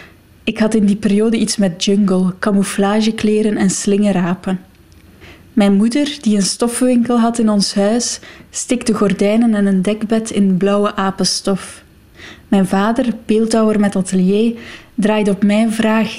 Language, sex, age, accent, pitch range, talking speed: Dutch, female, 20-39, Dutch, 195-220 Hz, 135 wpm